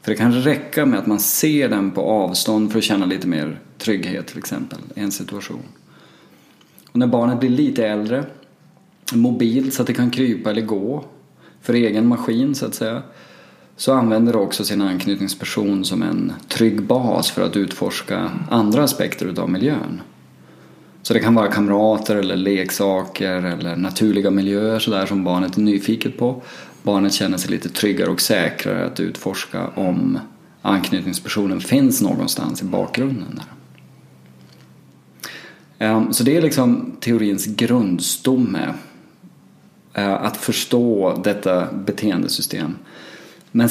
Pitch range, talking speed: 100-125 Hz, 135 wpm